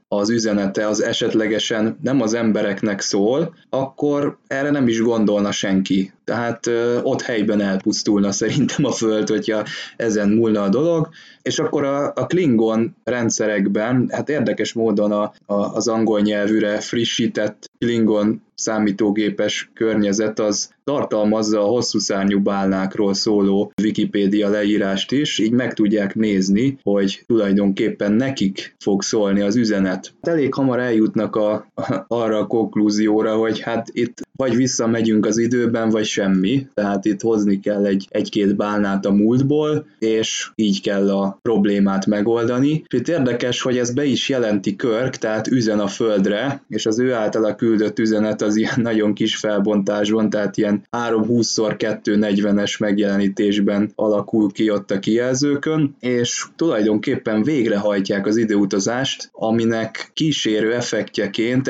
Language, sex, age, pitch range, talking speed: Hungarian, male, 20-39, 105-120 Hz, 135 wpm